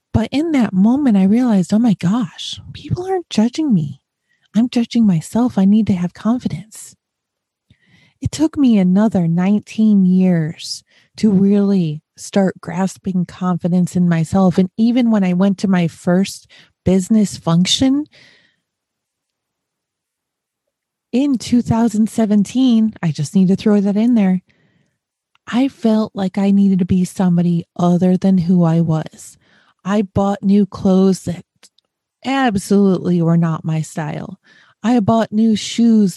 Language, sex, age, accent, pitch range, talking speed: English, female, 30-49, American, 175-225 Hz, 135 wpm